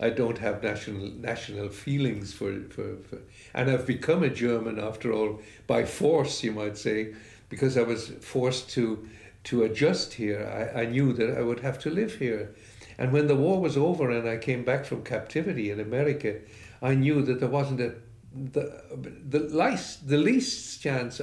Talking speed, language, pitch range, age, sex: 185 wpm, English, 105-125 Hz, 60-79, male